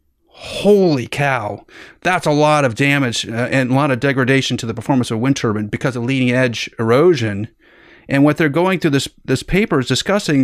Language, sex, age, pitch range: English, male, 30-49, 115-145 Hz